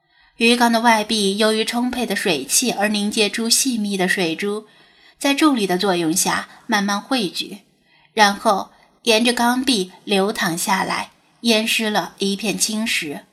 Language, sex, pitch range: Chinese, female, 195-245 Hz